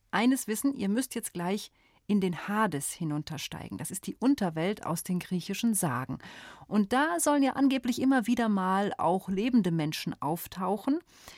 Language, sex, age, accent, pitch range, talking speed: German, female, 40-59, German, 175-230 Hz, 160 wpm